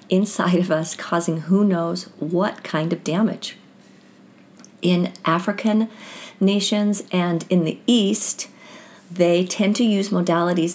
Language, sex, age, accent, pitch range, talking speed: English, female, 50-69, American, 165-205 Hz, 125 wpm